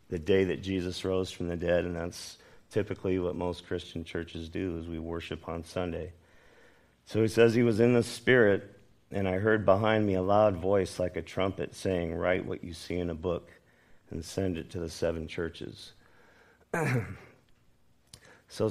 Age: 50-69